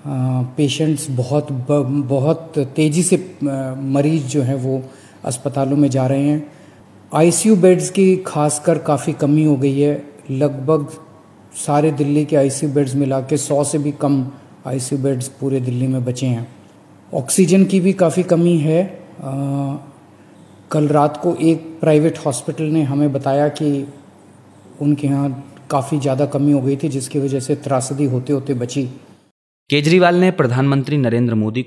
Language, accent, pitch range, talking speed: Hindi, native, 120-150 Hz, 155 wpm